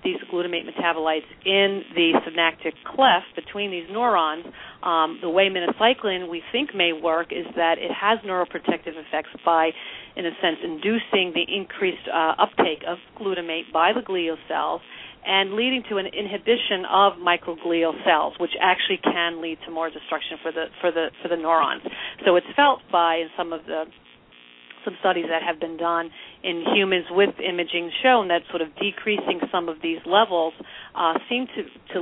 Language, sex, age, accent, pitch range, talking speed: English, female, 40-59, American, 165-200 Hz, 170 wpm